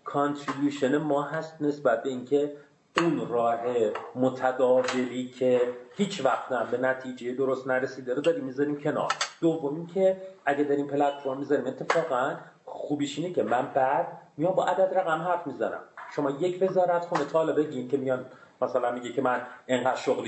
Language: Persian